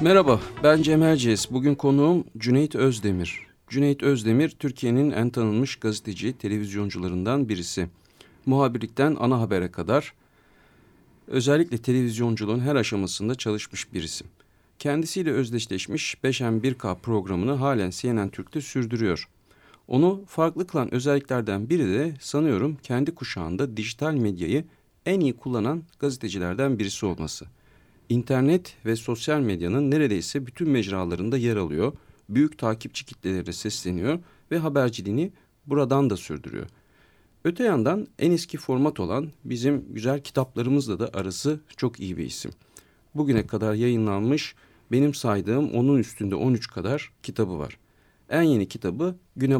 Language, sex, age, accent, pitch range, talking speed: Turkish, male, 40-59, native, 105-145 Hz, 120 wpm